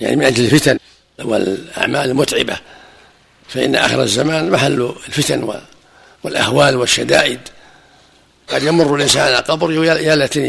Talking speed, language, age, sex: 110 wpm, Arabic, 60-79, male